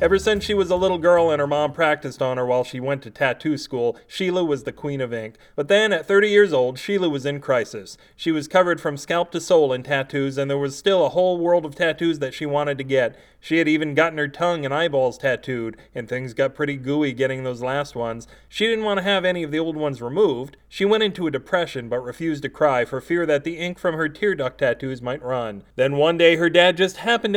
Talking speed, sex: 250 wpm, male